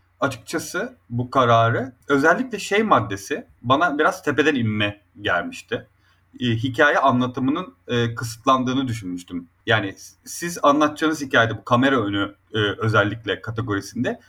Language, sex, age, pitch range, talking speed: Turkish, male, 30-49, 110-145 Hz, 115 wpm